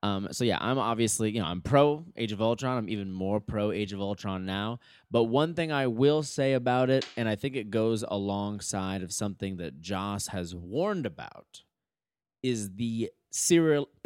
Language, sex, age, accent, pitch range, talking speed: English, male, 20-39, American, 100-140 Hz, 190 wpm